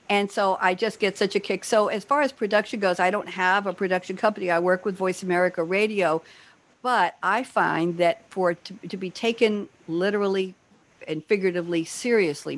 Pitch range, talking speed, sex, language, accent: 170-210 Hz, 185 wpm, female, English, American